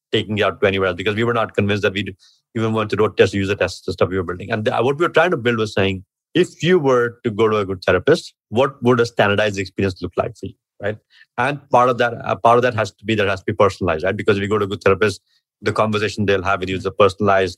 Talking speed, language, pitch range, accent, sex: 305 wpm, English, 105-125 Hz, Indian, male